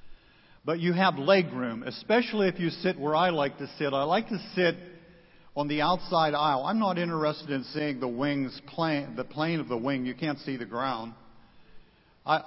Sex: male